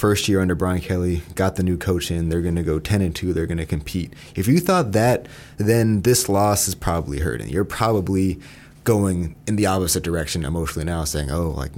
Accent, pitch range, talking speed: American, 80-105 Hz, 220 wpm